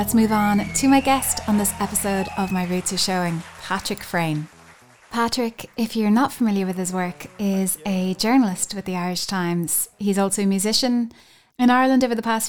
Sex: female